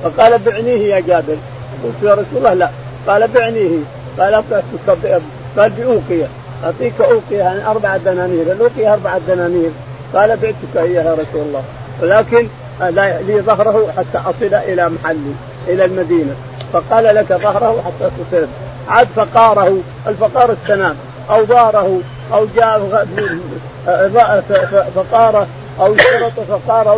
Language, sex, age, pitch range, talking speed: Arabic, male, 50-69, 175-220 Hz, 120 wpm